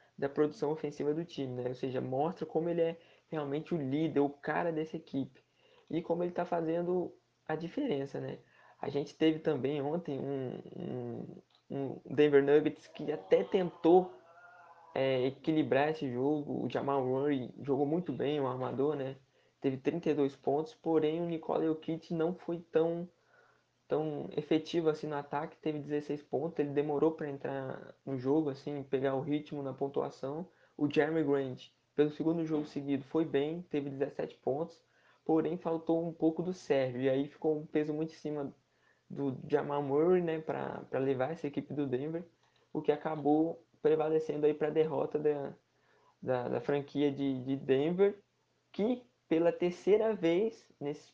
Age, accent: 20-39, Brazilian